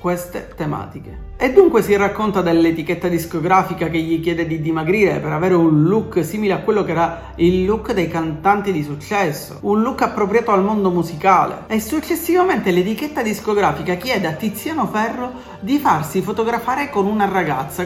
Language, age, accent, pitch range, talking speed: Italian, 40-59, native, 180-240 Hz, 160 wpm